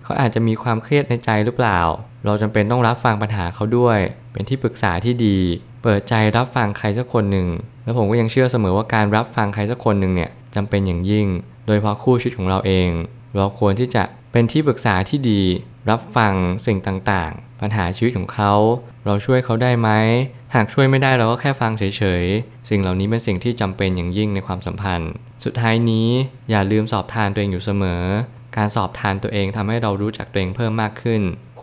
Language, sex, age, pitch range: Thai, male, 20-39, 100-120 Hz